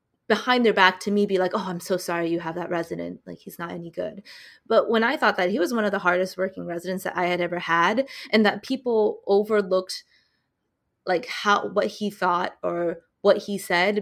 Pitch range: 175-205 Hz